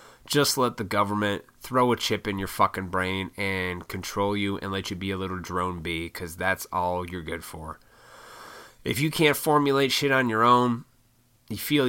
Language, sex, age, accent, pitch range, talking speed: English, male, 20-39, American, 95-130 Hz, 190 wpm